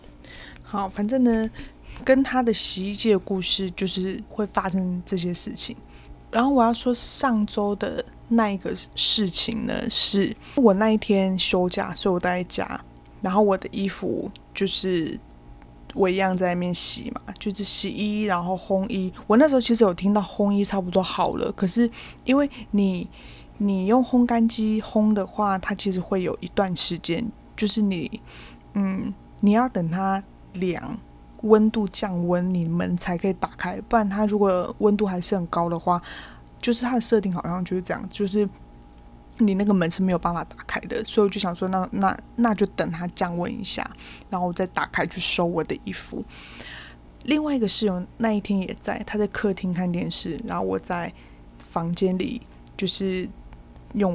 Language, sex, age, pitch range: Chinese, female, 20-39, 180-215 Hz